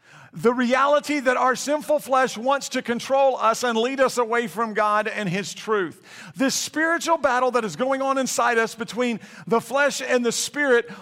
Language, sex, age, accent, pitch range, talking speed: English, male, 50-69, American, 215-260 Hz, 185 wpm